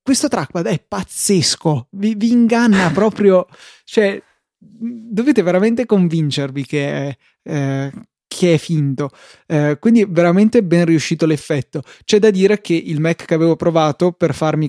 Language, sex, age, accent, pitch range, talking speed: Italian, male, 20-39, native, 145-185 Hz, 145 wpm